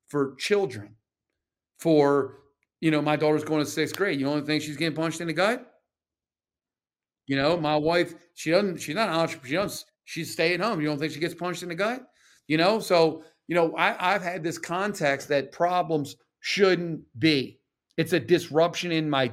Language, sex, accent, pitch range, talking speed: English, male, American, 150-195 Hz, 195 wpm